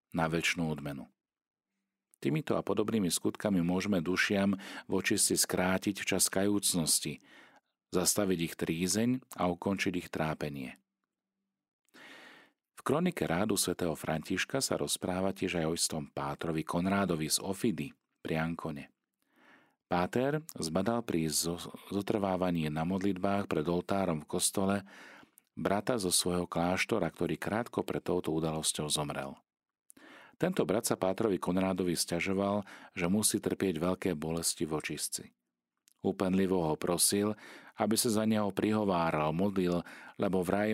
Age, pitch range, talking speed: 40-59, 80-100 Hz, 120 wpm